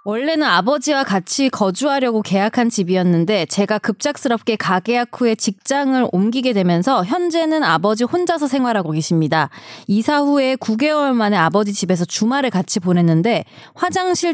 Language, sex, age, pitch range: Korean, female, 20-39, 190-270 Hz